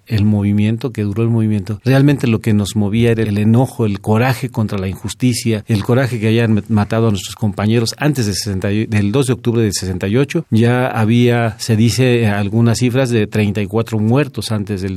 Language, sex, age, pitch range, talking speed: Spanish, male, 40-59, 105-130 Hz, 190 wpm